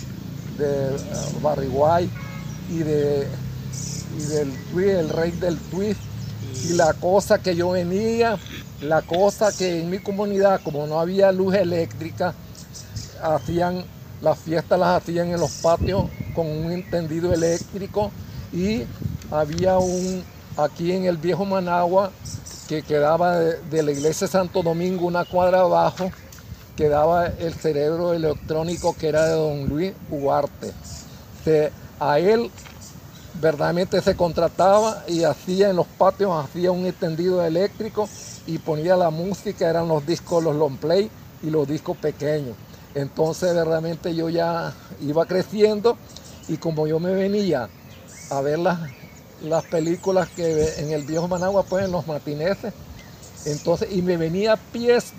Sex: male